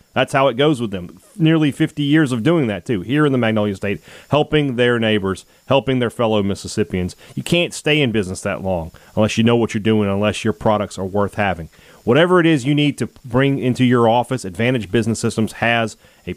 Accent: American